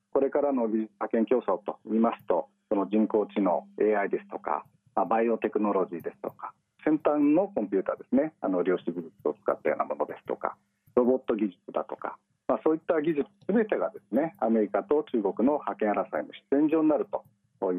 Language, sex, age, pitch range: Japanese, male, 40-59, 105-155 Hz